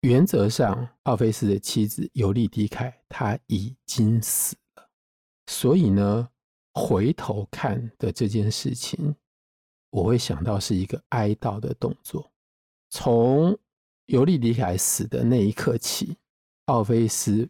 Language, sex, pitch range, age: Chinese, male, 100-125 Hz, 50-69